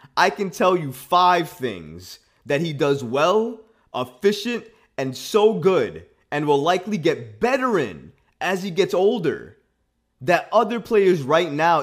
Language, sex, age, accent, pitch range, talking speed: English, male, 20-39, American, 120-185 Hz, 145 wpm